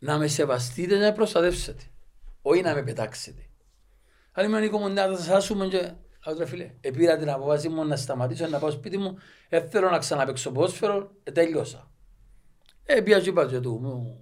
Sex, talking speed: male, 175 wpm